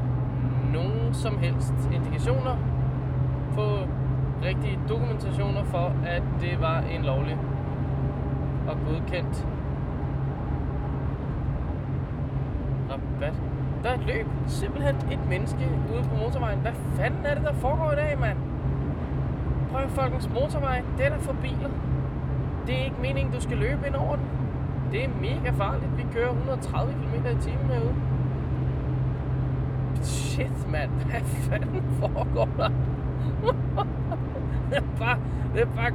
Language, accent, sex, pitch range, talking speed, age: Danish, native, male, 125-130 Hz, 125 wpm, 20-39